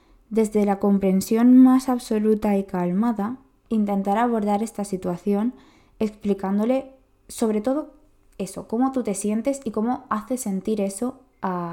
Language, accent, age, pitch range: Spanish, Spanish, 20-39, 185-220 Hz